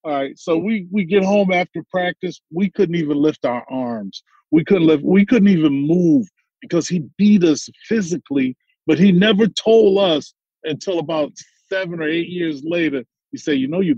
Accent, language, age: American, English, 40-59